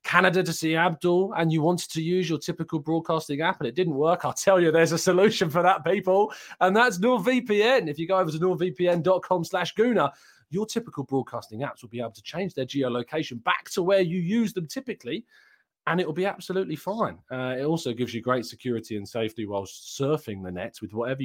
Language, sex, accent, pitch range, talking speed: English, male, British, 120-180 Hz, 215 wpm